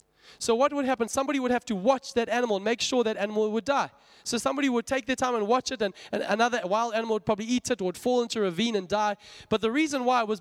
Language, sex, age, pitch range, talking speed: English, male, 20-39, 210-260 Hz, 285 wpm